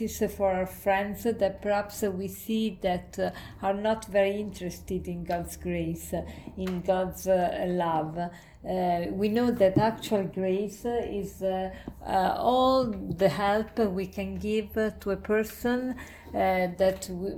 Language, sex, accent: English, female, Italian